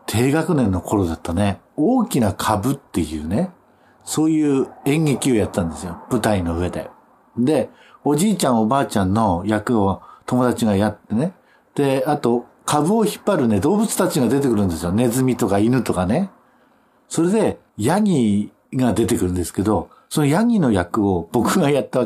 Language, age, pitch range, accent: Japanese, 50-69, 100-145 Hz, native